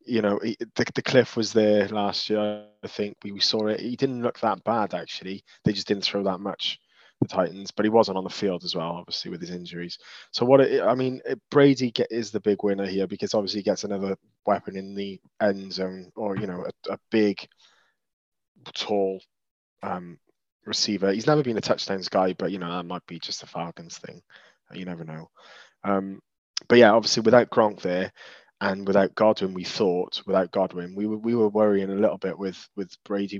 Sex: male